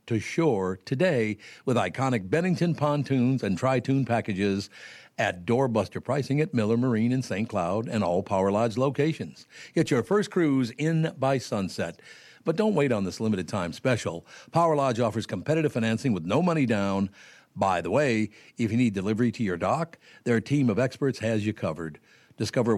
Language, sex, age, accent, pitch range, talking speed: English, male, 60-79, American, 100-140 Hz, 170 wpm